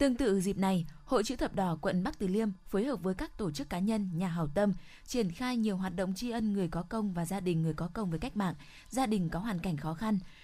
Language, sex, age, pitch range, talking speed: Vietnamese, female, 20-39, 175-220 Hz, 280 wpm